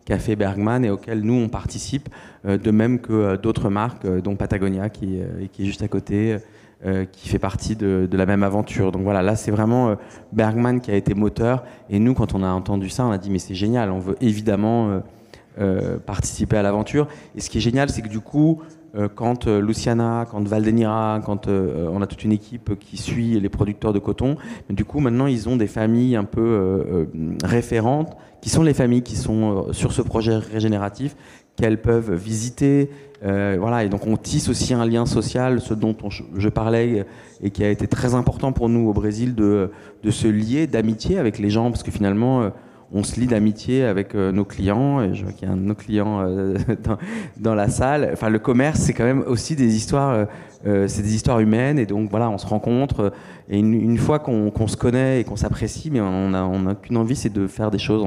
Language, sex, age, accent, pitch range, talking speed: French, male, 30-49, French, 100-120 Hz, 210 wpm